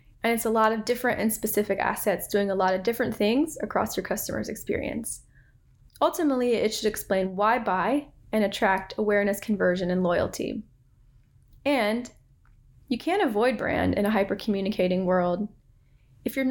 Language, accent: English, American